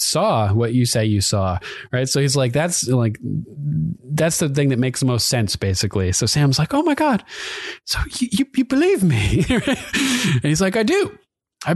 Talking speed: 200 wpm